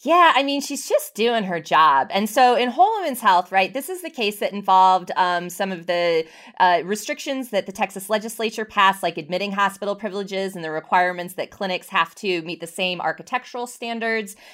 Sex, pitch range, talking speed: female, 180-245 Hz, 200 wpm